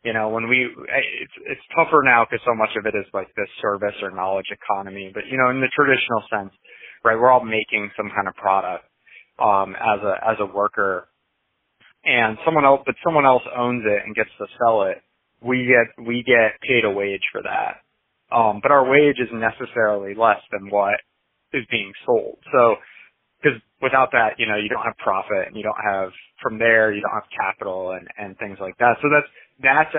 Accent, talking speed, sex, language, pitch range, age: American, 205 wpm, male, English, 105-130 Hz, 30-49